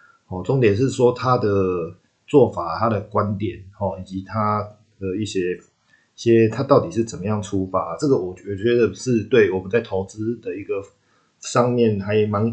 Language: Chinese